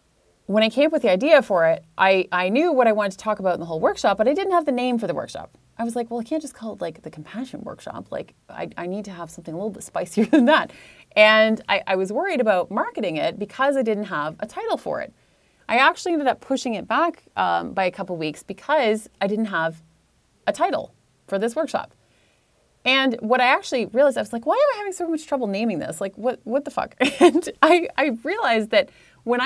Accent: American